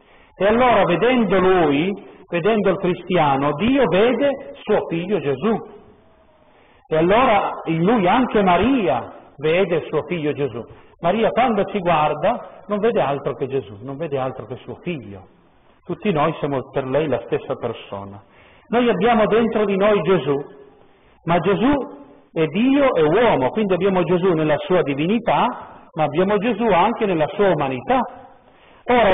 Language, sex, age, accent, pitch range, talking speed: Italian, male, 50-69, native, 155-230 Hz, 145 wpm